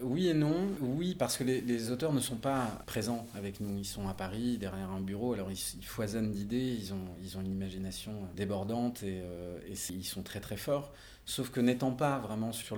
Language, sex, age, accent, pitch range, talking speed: French, male, 30-49, French, 100-125 Hz, 225 wpm